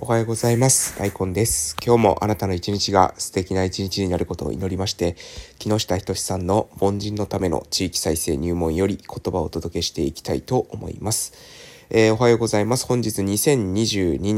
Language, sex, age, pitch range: Japanese, male, 20-39, 95-115 Hz